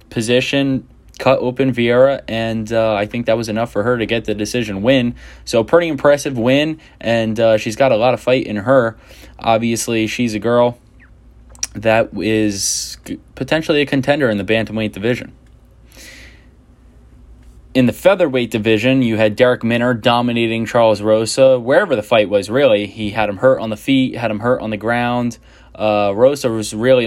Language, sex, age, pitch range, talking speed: English, male, 10-29, 105-120 Hz, 175 wpm